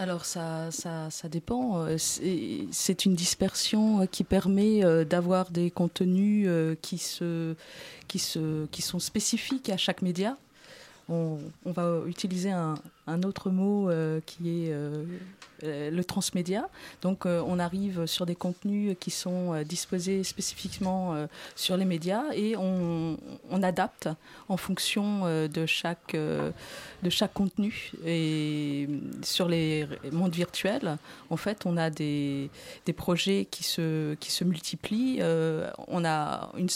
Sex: female